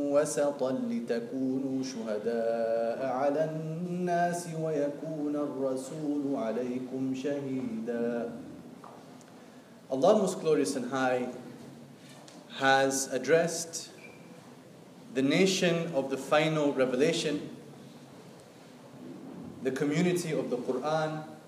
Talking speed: 50 wpm